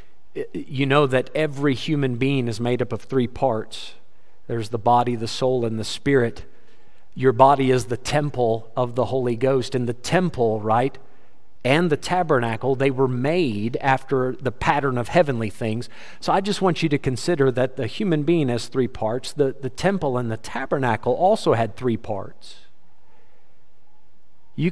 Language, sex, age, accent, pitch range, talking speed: English, male, 50-69, American, 120-145 Hz, 170 wpm